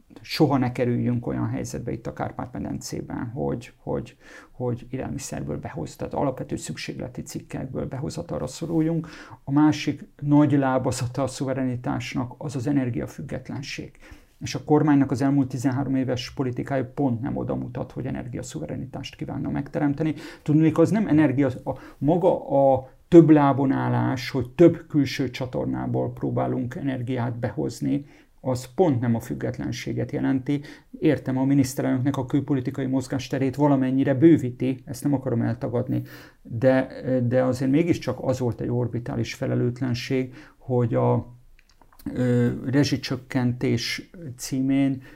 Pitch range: 125-145 Hz